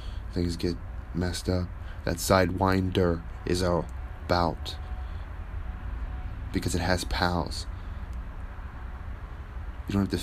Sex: male